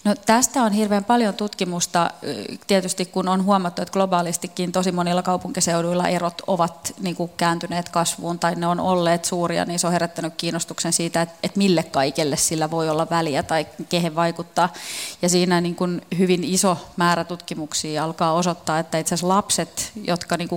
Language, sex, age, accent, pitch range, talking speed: Finnish, female, 30-49, native, 165-185 Hz, 160 wpm